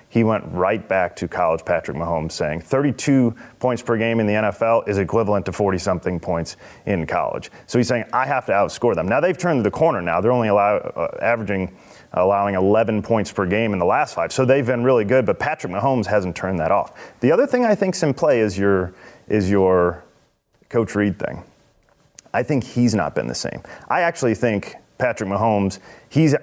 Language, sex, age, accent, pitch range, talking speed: English, male, 30-49, American, 95-120 Hz, 205 wpm